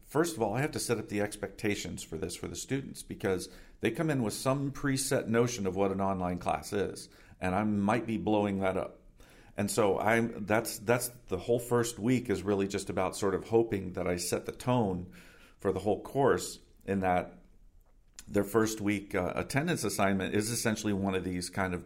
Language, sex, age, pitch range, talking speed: English, male, 50-69, 95-115 Hz, 210 wpm